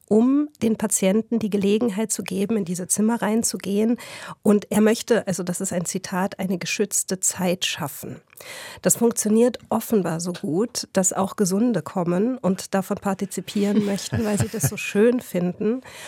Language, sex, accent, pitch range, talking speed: German, female, German, 180-210 Hz, 155 wpm